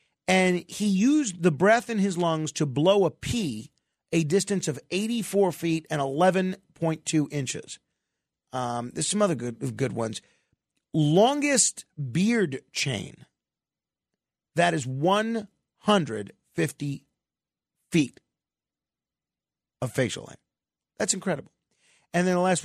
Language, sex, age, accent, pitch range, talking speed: English, male, 40-59, American, 145-195 Hz, 125 wpm